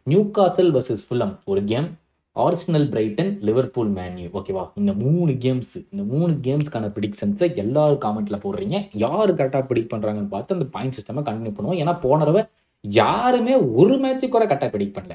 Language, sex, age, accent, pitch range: Tamil, male, 20-39, native, 105-165 Hz